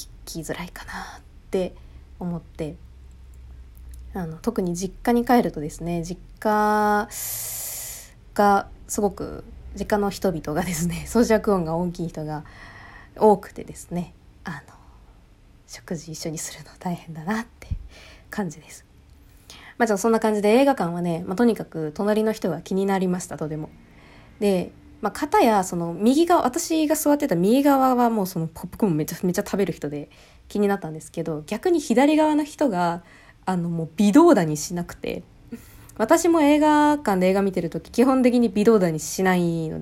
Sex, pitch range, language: female, 165-220 Hz, Japanese